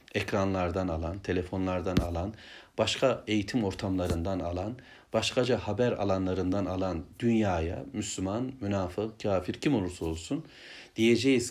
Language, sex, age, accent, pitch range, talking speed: Turkish, male, 60-79, native, 95-120 Hz, 105 wpm